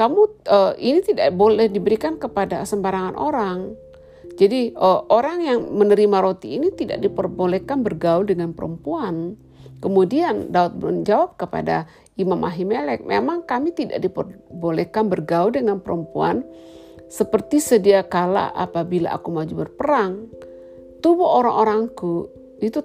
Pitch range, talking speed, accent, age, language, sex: 175-240 Hz, 115 wpm, native, 50-69, Indonesian, female